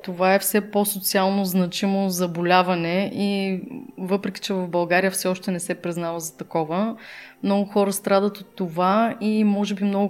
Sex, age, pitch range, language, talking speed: female, 20-39, 185-215 Hz, Bulgarian, 160 wpm